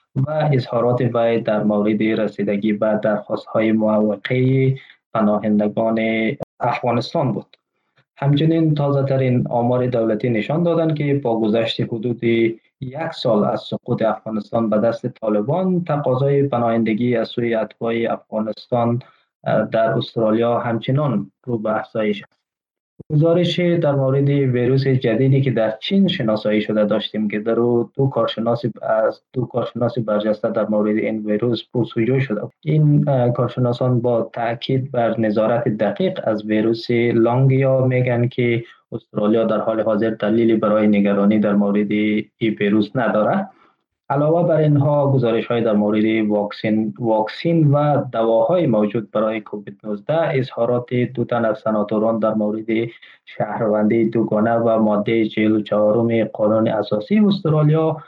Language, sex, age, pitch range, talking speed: Persian, male, 20-39, 110-135 Hz, 125 wpm